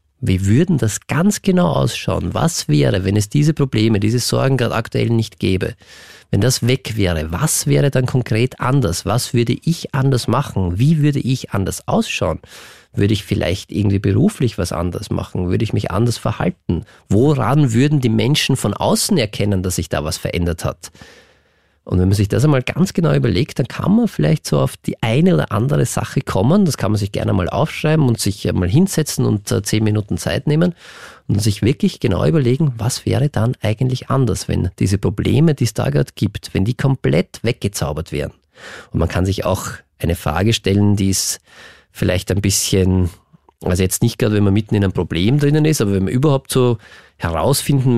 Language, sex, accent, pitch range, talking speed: German, male, German, 100-140 Hz, 195 wpm